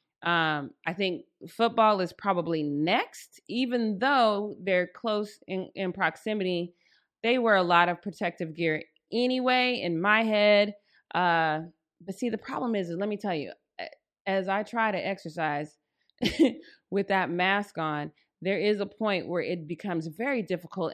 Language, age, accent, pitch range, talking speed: English, 30-49, American, 170-210 Hz, 150 wpm